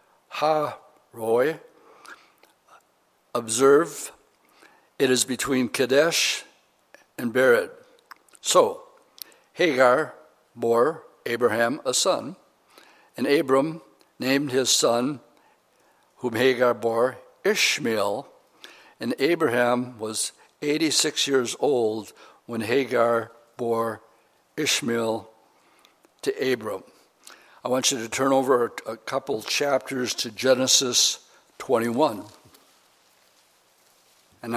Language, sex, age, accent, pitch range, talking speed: English, male, 60-79, American, 115-135 Hz, 85 wpm